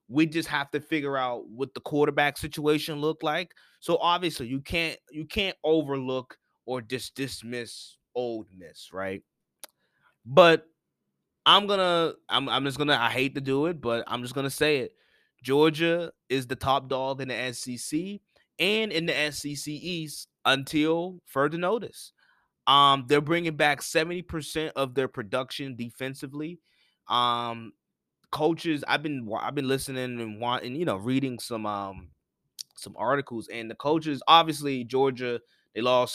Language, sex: English, male